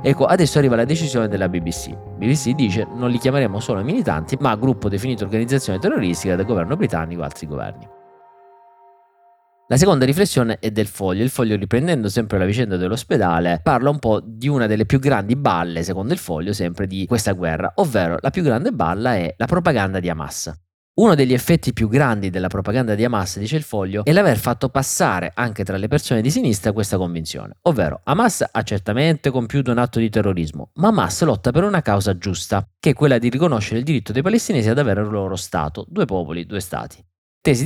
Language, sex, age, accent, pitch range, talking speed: Italian, male, 30-49, native, 95-135 Hz, 195 wpm